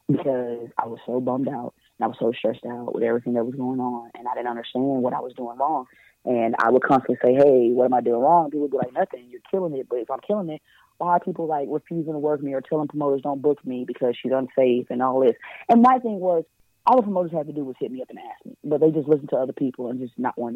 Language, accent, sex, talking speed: English, American, female, 290 wpm